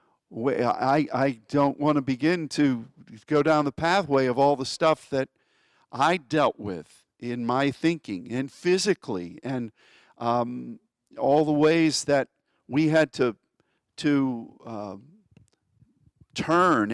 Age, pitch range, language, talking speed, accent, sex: 50-69, 120-155 Hz, English, 130 wpm, American, male